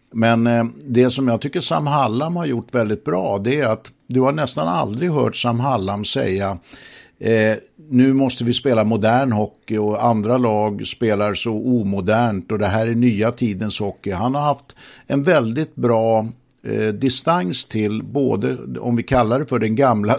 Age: 60-79